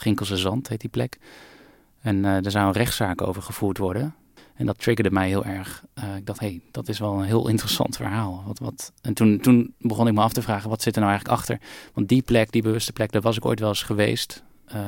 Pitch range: 100-115 Hz